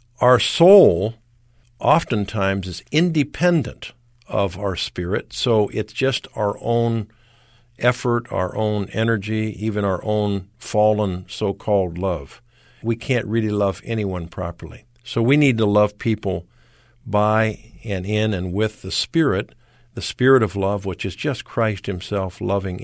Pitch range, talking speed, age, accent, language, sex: 100-120 Hz, 135 wpm, 50-69, American, English, male